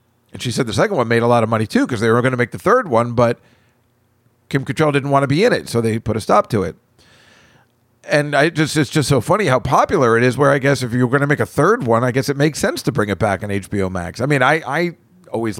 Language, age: English, 50-69